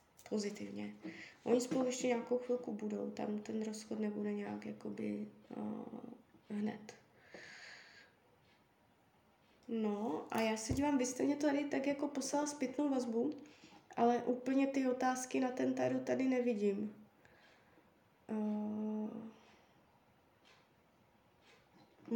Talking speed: 100 wpm